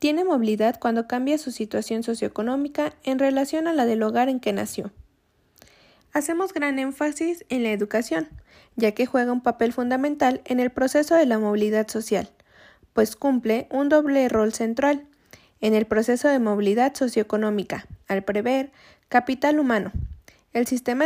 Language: Spanish